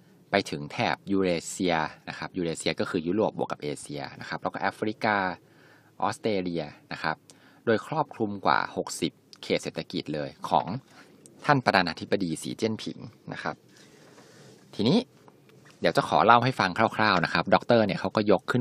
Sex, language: male, Thai